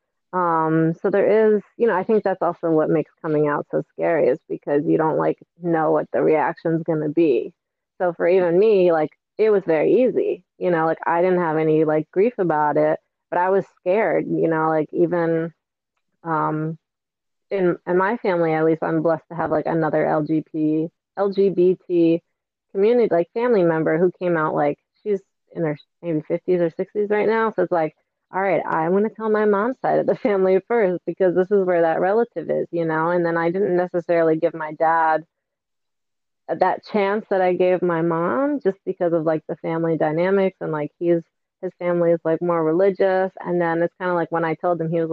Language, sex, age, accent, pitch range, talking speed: English, female, 20-39, American, 160-190 Hz, 205 wpm